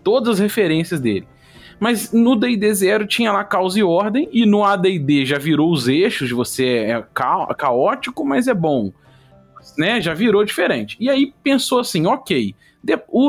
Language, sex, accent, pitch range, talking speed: Portuguese, male, Brazilian, 140-215 Hz, 165 wpm